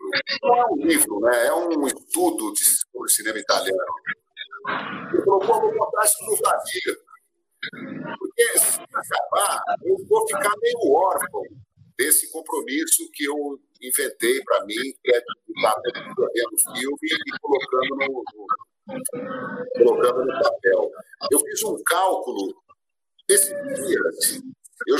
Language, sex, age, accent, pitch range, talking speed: Portuguese, male, 50-69, Brazilian, 300-415 Hz, 125 wpm